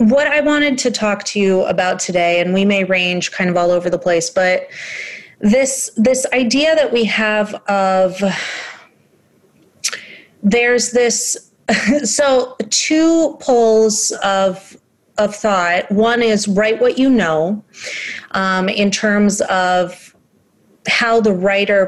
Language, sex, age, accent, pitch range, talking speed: English, female, 30-49, American, 190-235 Hz, 130 wpm